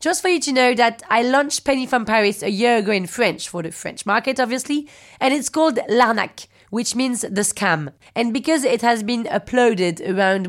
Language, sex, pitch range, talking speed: English, female, 200-255 Hz, 205 wpm